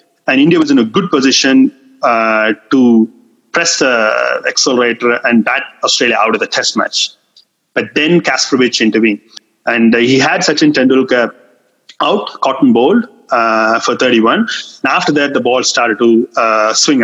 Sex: male